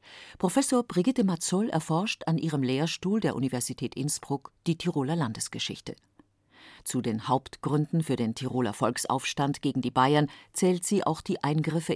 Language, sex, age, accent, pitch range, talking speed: German, female, 40-59, German, 125-170 Hz, 140 wpm